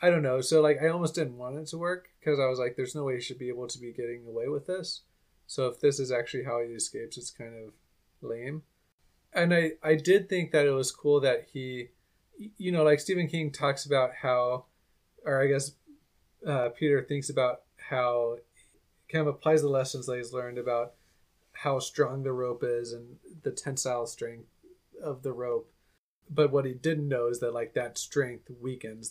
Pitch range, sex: 125-155 Hz, male